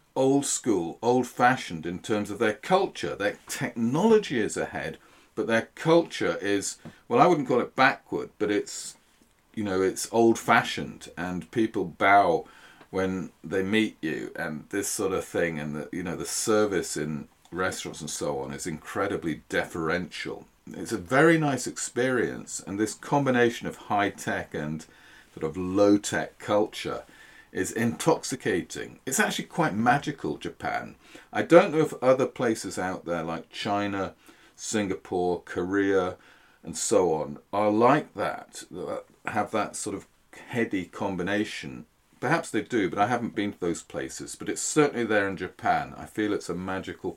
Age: 40-59